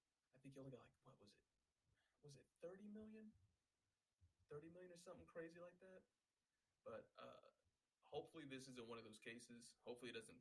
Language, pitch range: English, 110-130 Hz